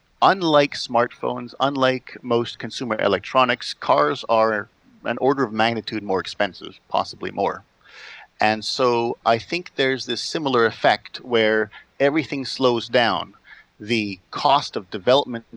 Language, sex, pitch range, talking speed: English, male, 100-125 Hz, 125 wpm